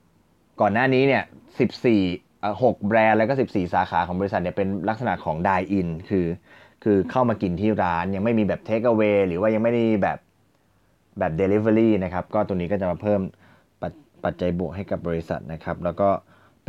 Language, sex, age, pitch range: Thai, male, 20-39, 90-110 Hz